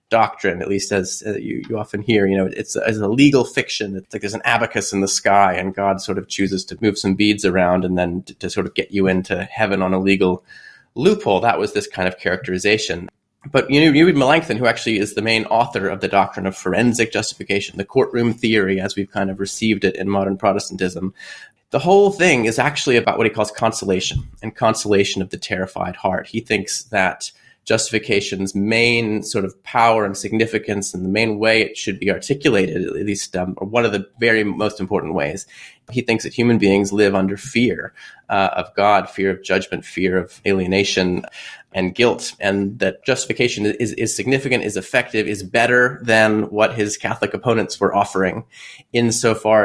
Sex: male